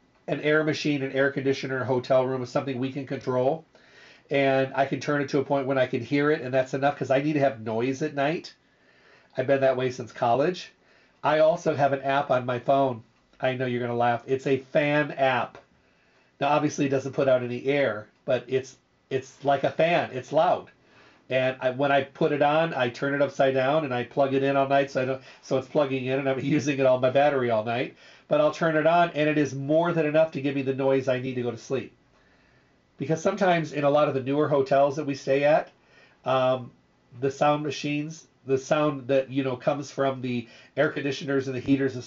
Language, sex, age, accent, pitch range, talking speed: English, male, 40-59, American, 130-145 Hz, 235 wpm